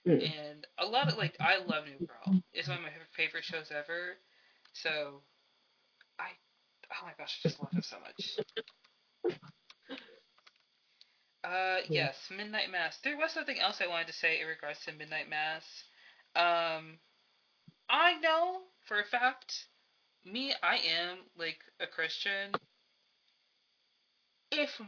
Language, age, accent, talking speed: English, 20-39, American, 135 wpm